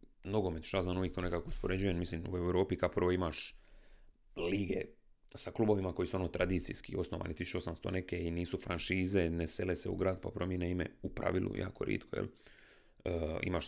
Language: Croatian